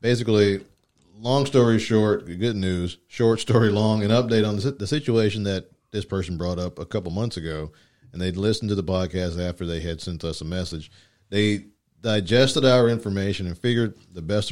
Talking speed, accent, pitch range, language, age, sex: 180 wpm, American, 90-110 Hz, English, 40-59, male